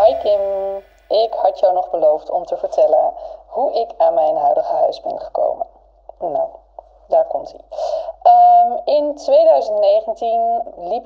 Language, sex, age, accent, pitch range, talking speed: Dutch, female, 20-39, Dutch, 295-335 Hz, 135 wpm